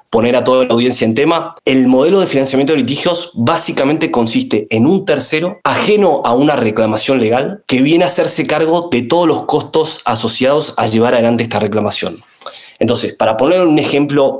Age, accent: 20-39, Argentinian